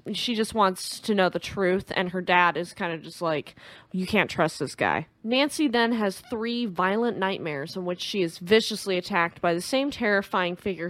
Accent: American